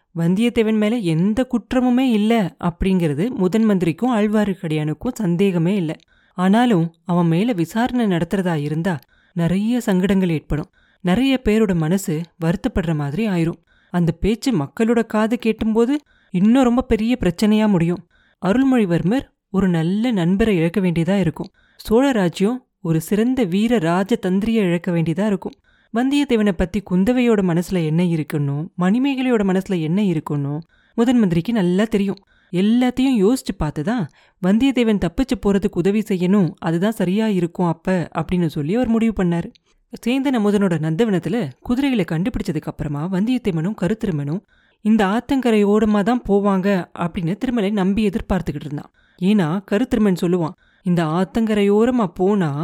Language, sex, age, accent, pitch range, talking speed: Tamil, female, 20-39, native, 175-225 Hz, 95 wpm